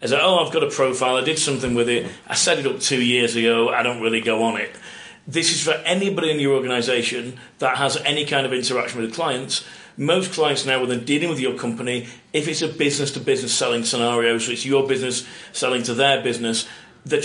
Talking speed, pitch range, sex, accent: 225 wpm, 125-155 Hz, male, British